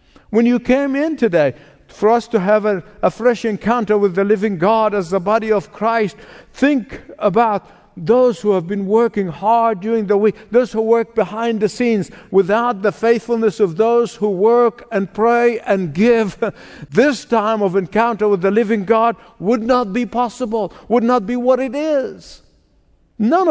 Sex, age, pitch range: male, 60-79, 190-245 Hz